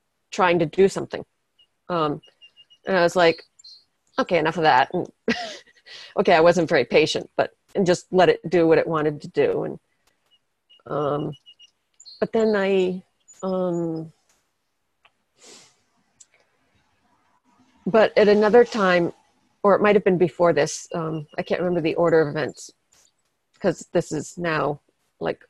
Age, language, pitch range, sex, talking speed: 40-59, English, 170-195 Hz, female, 140 wpm